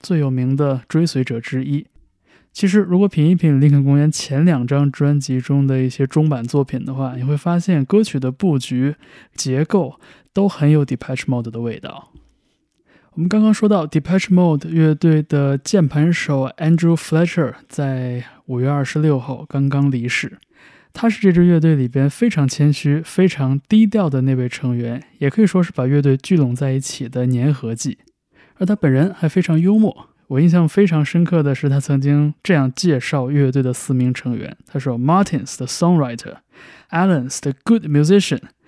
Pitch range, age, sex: 130-165 Hz, 20-39, male